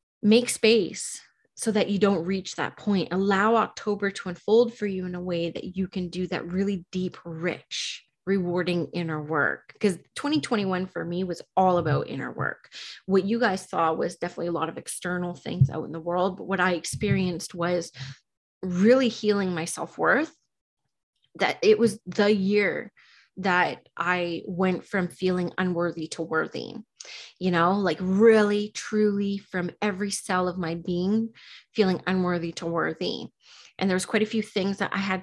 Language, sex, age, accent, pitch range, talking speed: English, female, 30-49, American, 175-210 Hz, 170 wpm